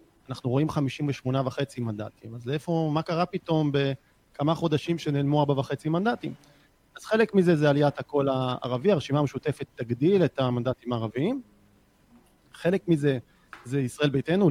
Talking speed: 140 wpm